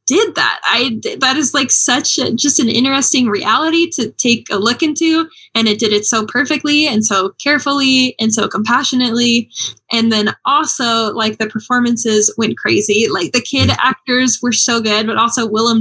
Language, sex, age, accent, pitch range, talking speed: English, female, 10-29, American, 215-255 Hz, 175 wpm